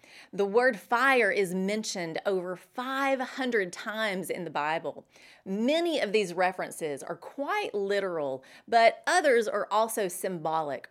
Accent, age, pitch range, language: American, 30-49, 175-240 Hz, English